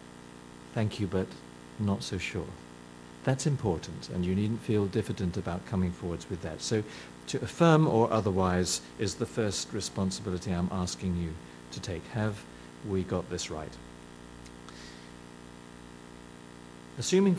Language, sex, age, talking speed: English, male, 50-69, 130 wpm